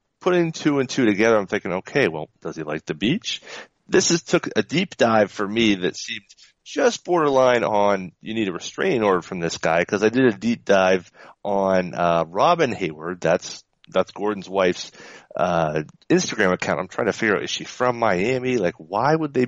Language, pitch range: English, 90-120 Hz